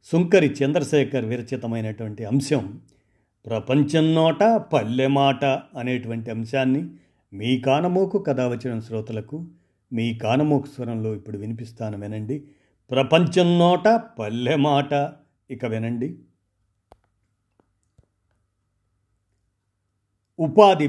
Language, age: Telugu, 50-69